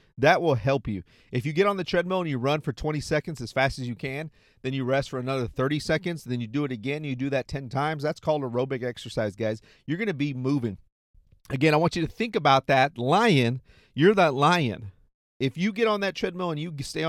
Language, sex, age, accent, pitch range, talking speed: English, male, 40-59, American, 120-155 Hz, 240 wpm